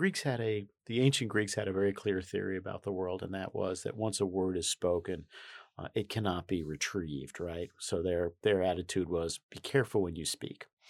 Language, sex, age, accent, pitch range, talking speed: English, male, 50-69, American, 90-110 Hz, 220 wpm